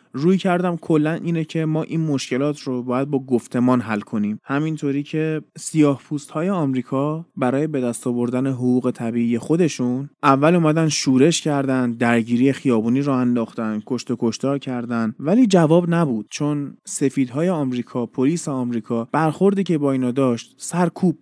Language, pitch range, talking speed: Persian, 120-155 Hz, 145 wpm